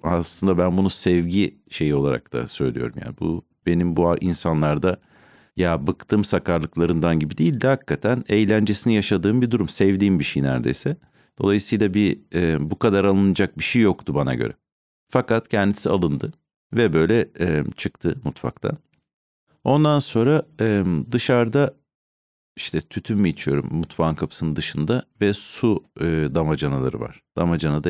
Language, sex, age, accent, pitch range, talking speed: Turkish, male, 50-69, native, 75-100 Hz, 125 wpm